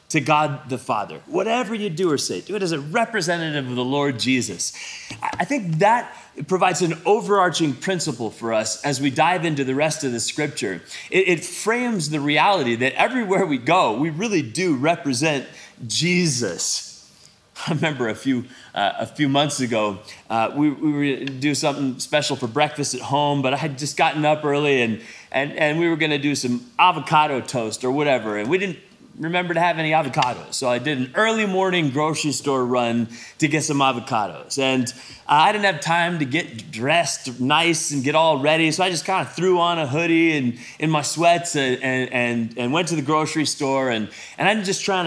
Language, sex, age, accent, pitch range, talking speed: English, male, 30-49, American, 130-170 Hz, 200 wpm